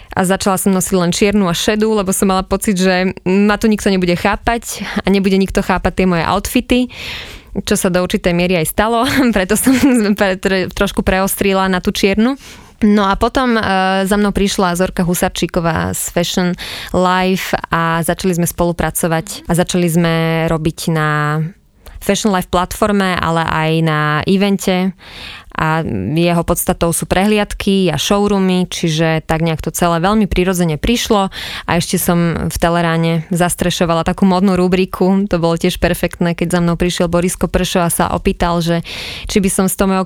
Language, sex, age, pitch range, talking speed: Slovak, female, 20-39, 170-200 Hz, 165 wpm